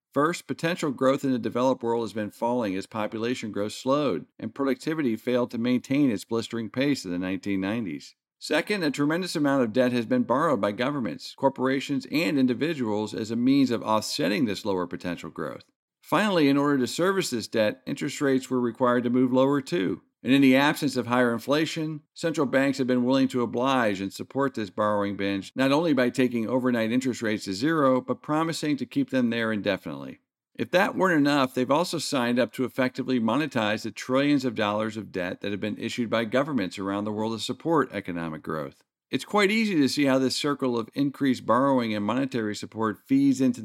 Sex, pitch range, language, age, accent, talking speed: male, 110-135 Hz, English, 50-69, American, 200 wpm